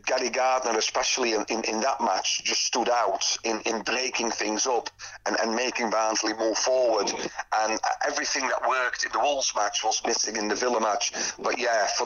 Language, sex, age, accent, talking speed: English, male, 40-59, British, 195 wpm